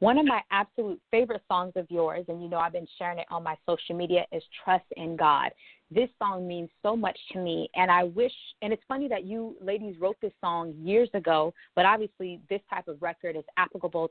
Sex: female